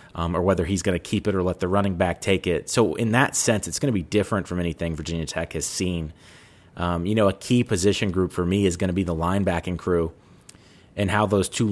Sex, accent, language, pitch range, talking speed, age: male, American, English, 85-105 Hz, 255 wpm, 30-49